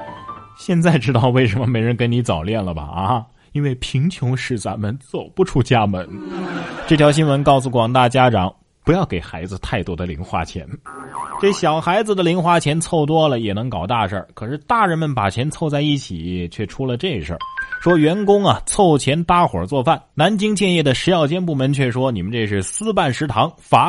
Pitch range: 105-160 Hz